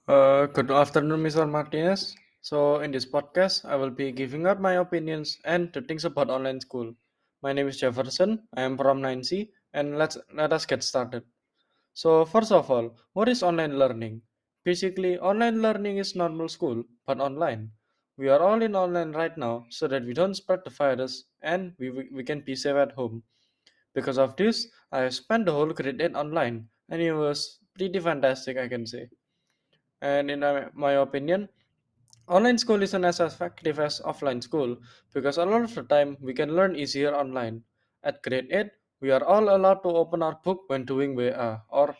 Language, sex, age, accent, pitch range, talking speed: English, male, 20-39, Indian, 130-175 Hz, 185 wpm